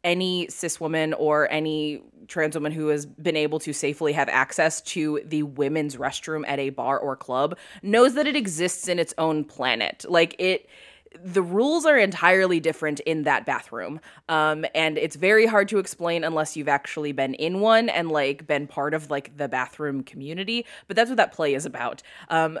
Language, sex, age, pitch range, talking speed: English, female, 20-39, 150-190 Hz, 190 wpm